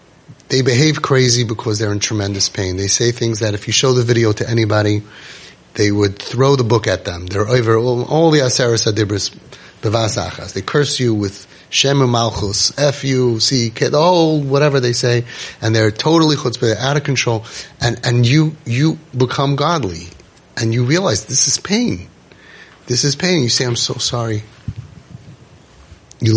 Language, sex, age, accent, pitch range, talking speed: English, male, 30-49, American, 110-140 Hz, 175 wpm